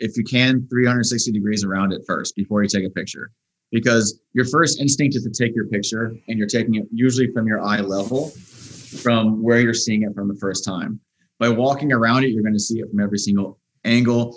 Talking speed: 220 wpm